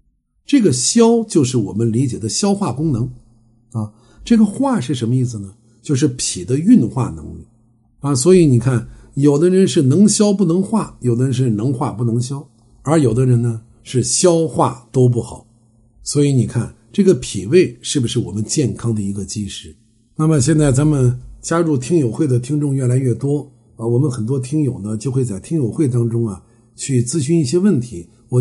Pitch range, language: 115-165 Hz, Chinese